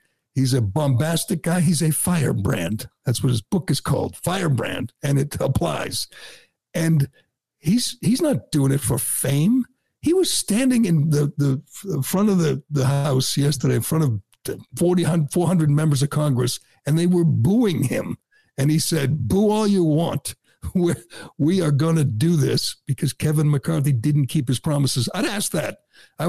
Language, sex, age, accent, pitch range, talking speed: English, male, 60-79, American, 135-175 Hz, 175 wpm